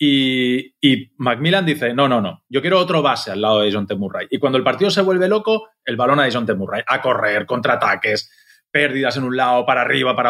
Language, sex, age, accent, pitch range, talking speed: Spanish, male, 30-49, Spanish, 115-170 Hz, 220 wpm